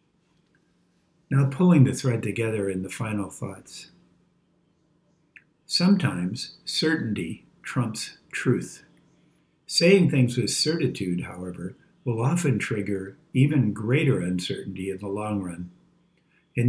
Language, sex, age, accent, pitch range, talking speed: English, male, 60-79, American, 105-145 Hz, 105 wpm